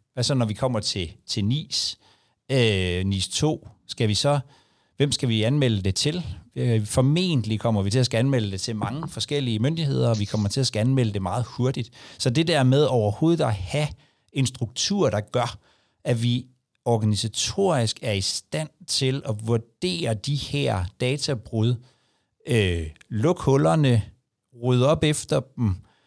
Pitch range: 105-135 Hz